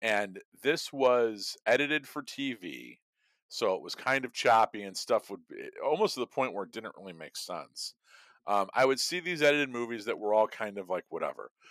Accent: American